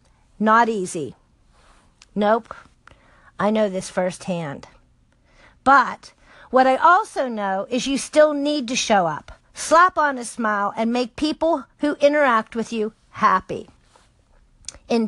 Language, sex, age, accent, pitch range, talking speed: English, female, 50-69, American, 225-300 Hz, 125 wpm